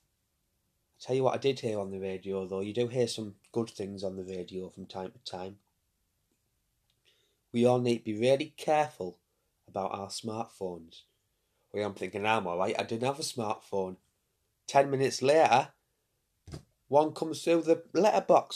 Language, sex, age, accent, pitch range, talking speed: English, male, 30-49, British, 95-125 Hz, 170 wpm